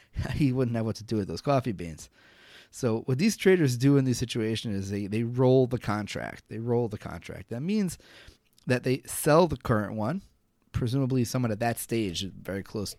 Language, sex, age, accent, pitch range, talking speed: English, male, 30-49, American, 100-130 Hz, 200 wpm